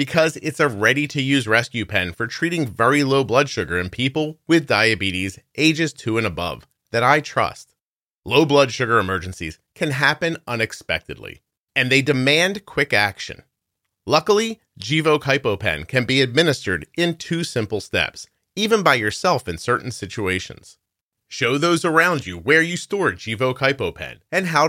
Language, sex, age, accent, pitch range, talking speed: English, male, 30-49, American, 110-160 Hz, 150 wpm